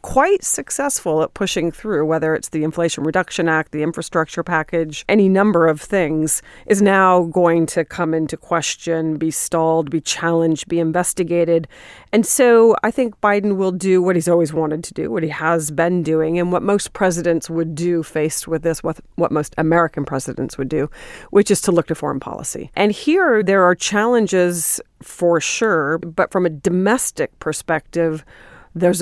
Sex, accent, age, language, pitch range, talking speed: female, American, 40-59, English, 155-185 Hz, 175 wpm